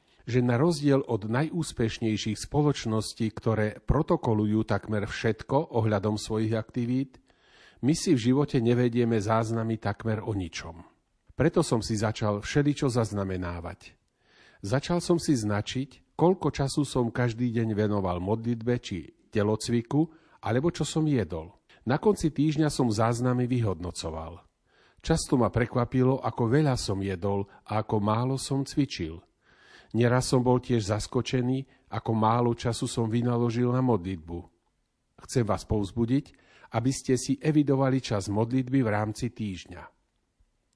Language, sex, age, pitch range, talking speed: Slovak, male, 40-59, 105-130 Hz, 130 wpm